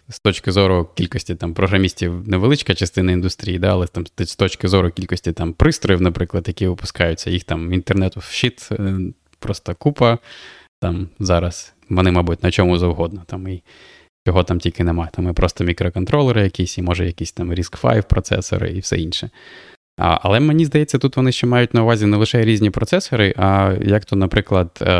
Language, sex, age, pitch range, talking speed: Ukrainian, male, 20-39, 90-105 Hz, 175 wpm